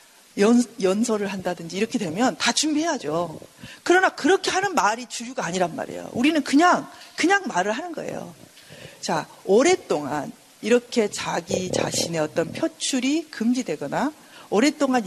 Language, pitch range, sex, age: Korean, 220-310 Hz, female, 40-59